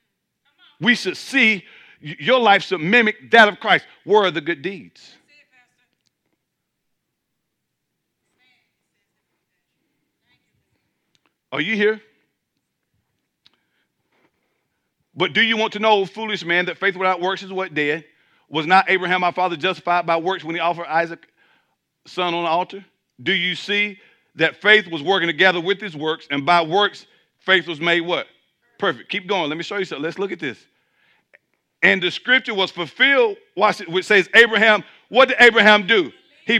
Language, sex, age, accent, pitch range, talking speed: English, male, 50-69, American, 175-220 Hz, 155 wpm